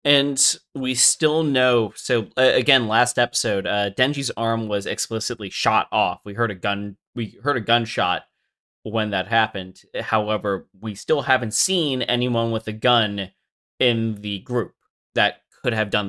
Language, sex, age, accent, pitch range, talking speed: English, male, 20-39, American, 105-130 Hz, 160 wpm